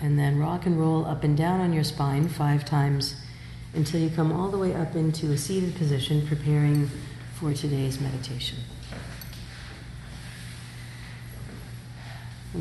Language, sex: English, female